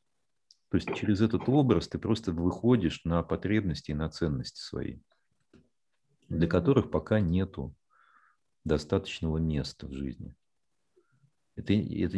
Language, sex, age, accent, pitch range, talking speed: Russian, male, 40-59, native, 80-125 Hz, 120 wpm